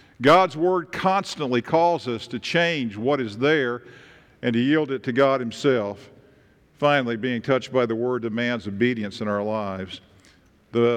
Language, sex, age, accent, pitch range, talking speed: English, male, 50-69, American, 135-195 Hz, 160 wpm